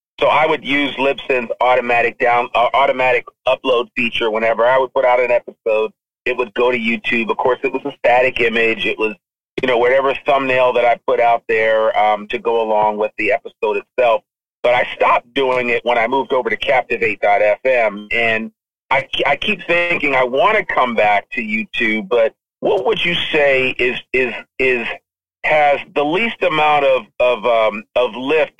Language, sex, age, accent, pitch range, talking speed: English, male, 40-59, American, 115-150 Hz, 185 wpm